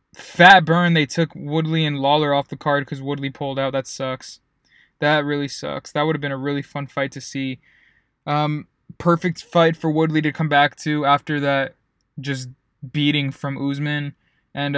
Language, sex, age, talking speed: English, male, 20-39, 185 wpm